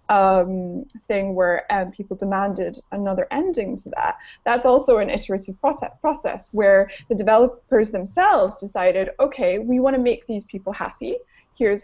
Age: 10-29